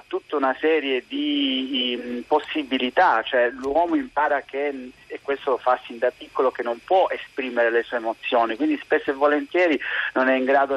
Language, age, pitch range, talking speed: Italian, 40-59, 125-160 Hz, 175 wpm